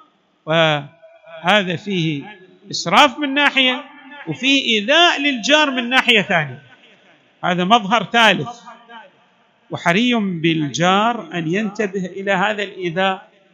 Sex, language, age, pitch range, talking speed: male, Arabic, 50-69, 185-265 Hz, 95 wpm